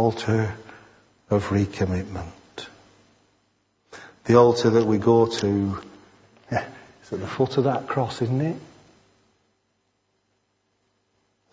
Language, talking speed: English, 90 wpm